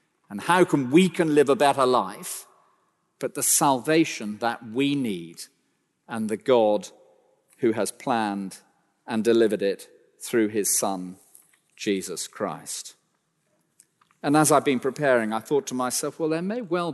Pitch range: 120-170 Hz